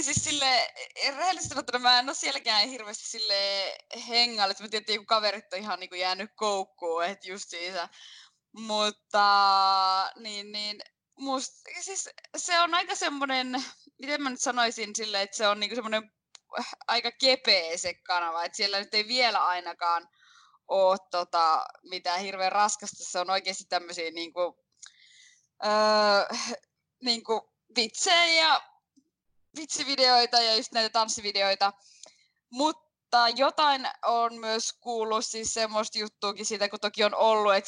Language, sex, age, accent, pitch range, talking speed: Finnish, female, 20-39, native, 190-255 Hz, 130 wpm